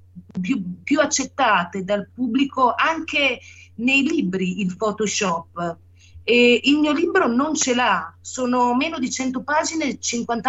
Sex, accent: female, native